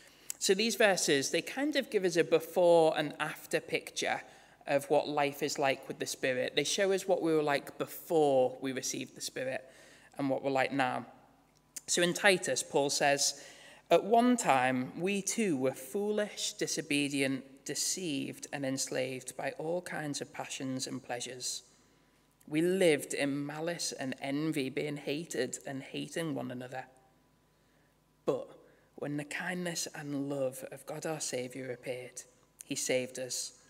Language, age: English, 20-39